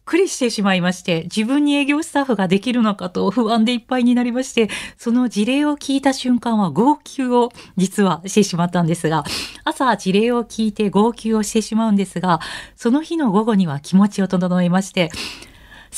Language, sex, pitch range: Japanese, female, 180-255 Hz